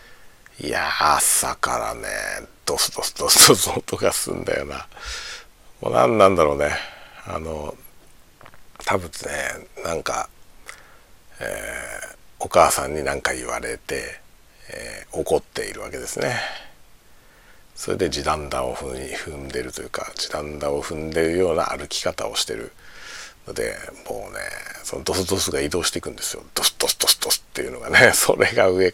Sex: male